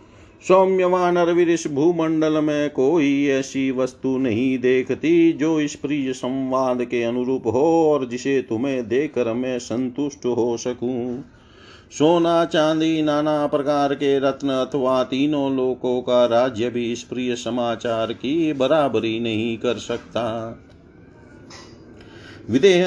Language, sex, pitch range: Hindi, male, 120-145 Hz